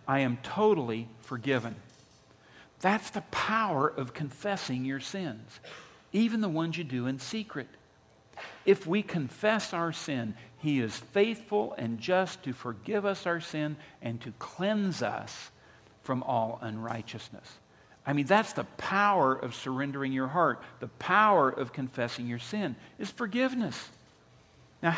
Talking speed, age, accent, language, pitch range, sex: 140 wpm, 50-69, American, English, 125-195 Hz, male